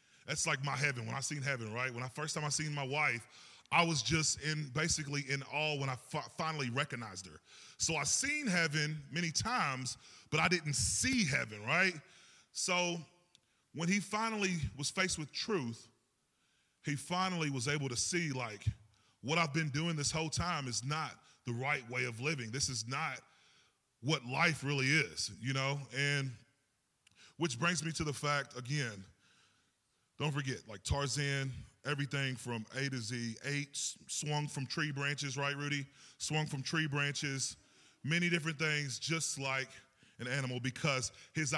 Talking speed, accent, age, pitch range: 165 wpm, American, 30-49, 130-160 Hz